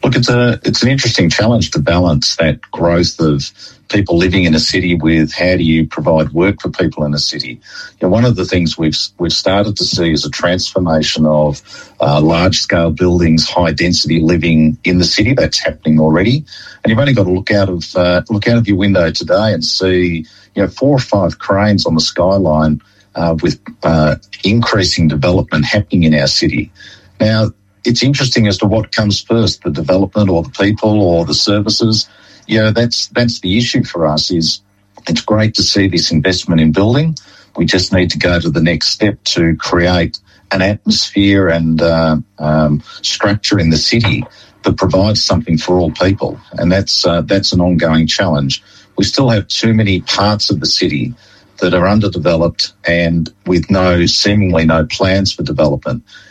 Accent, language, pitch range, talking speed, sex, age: Australian, English, 80-105 Hz, 190 wpm, male, 50-69